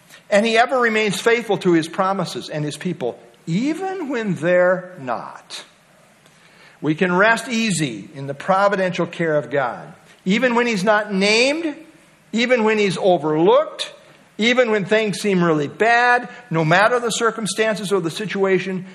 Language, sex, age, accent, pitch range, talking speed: English, male, 50-69, American, 160-210 Hz, 150 wpm